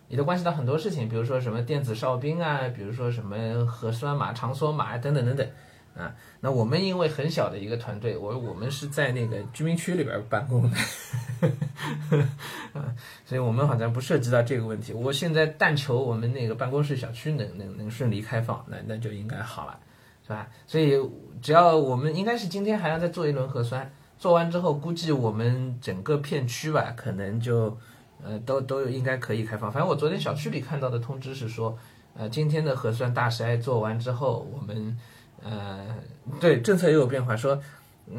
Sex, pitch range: male, 115-150 Hz